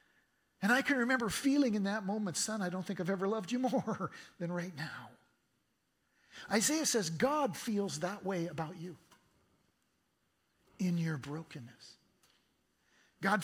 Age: 50-69